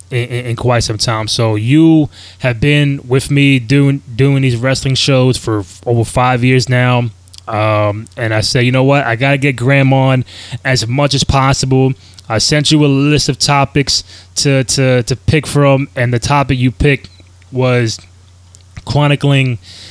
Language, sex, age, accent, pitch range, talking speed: English, male, 20-39, American, 115-140 Hz, 175 wpm